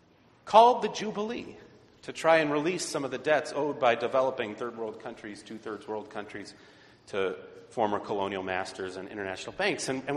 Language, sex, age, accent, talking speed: English, male, 40-59, American, 170 wpm